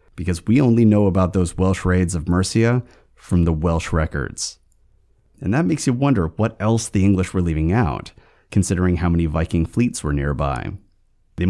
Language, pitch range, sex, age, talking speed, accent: English, 85-125 Hz, male, 30-49, 180 wpm, American